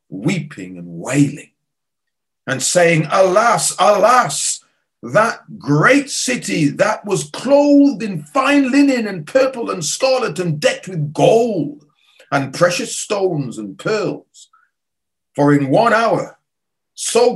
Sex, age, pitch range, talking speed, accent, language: male, 40-59, 140-195 Hz, 120 wpm, British, English